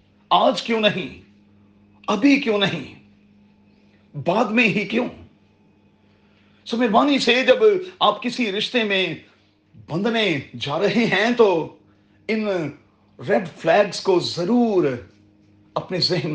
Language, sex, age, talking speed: Urdu, male, 40-59, 110 wpm